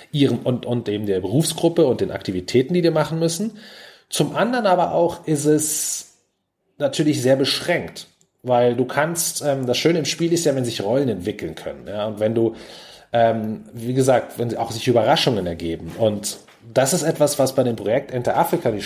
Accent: German